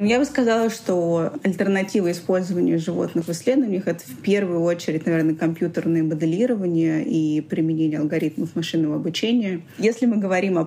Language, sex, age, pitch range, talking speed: Russian, female, 20-39, 160-190 Hz, 145 wpm